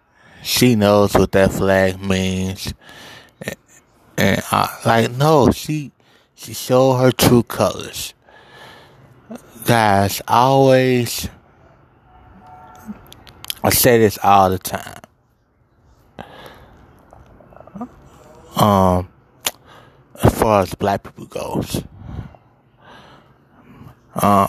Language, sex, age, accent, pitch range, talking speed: English, male, 20-39, American, 95-110 Hz, 85 wpm